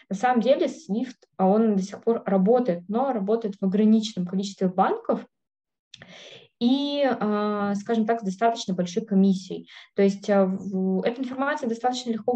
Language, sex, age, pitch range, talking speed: Russian, female, 20-39, 190-230 Hz, 130 wpm